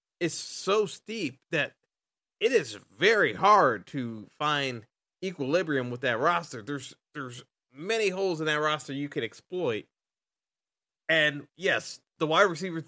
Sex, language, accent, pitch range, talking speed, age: male, English, American, 125-160 Hz, 135 wpm, 20-39